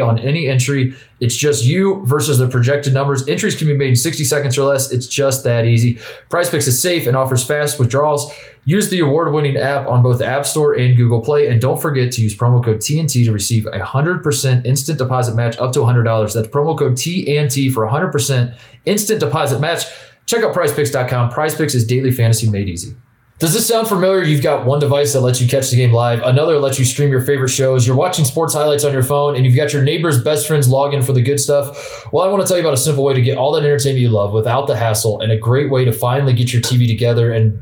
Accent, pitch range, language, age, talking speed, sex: American, 115-145 Hz, English, 20-39, 240 wpm, male